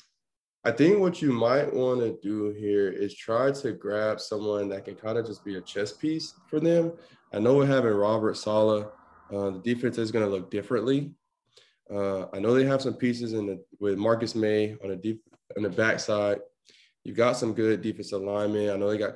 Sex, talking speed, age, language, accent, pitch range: male, 210 wpm, 20-39, English, American, 105-120 Hz